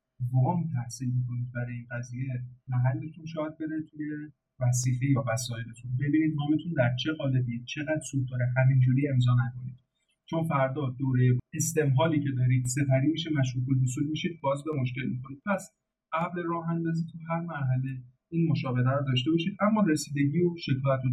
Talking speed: 155 wpm